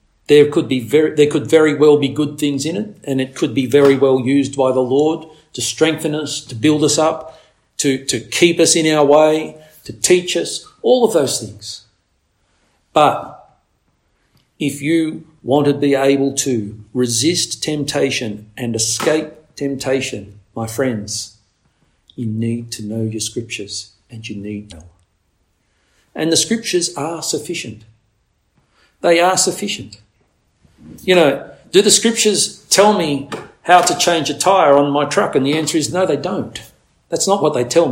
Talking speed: 165 wpm